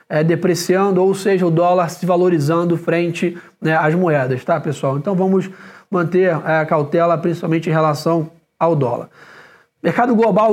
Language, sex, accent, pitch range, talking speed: English, male, Brazilian, 165-190 Hz, 140 wpm